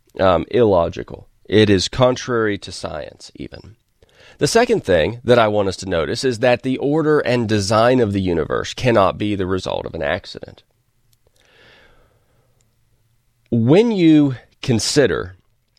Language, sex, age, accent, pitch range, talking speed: English, male, 30-49, American, 100-125 Hz, 135 wpm